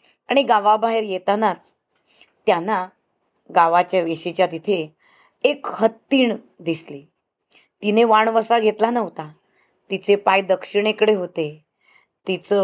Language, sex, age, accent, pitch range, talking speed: Marathi, female, 20-39, native, 180-225 Hz, 90 wpm